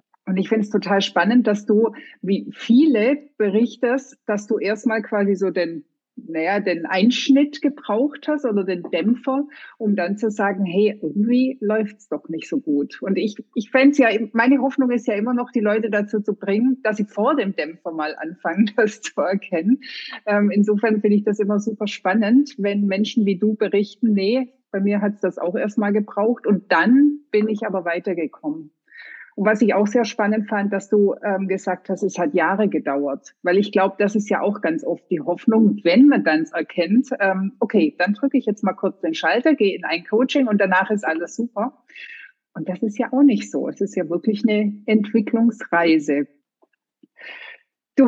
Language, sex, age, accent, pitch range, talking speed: German, female, 50-69, German, 195-245 Hz, 190 wpm